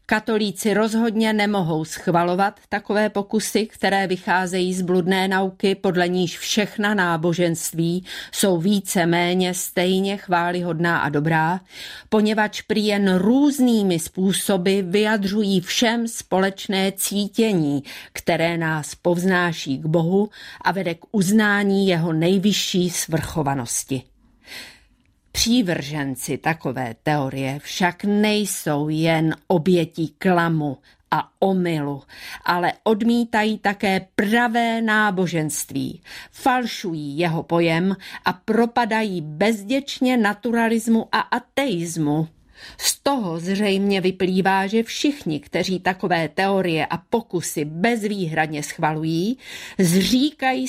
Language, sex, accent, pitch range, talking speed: Czech, female, native, 170-215 Hz, 95 wpm